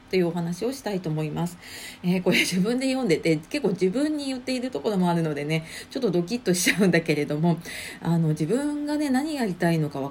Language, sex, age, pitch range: Japanese, female, 40-59, 160-230 Hz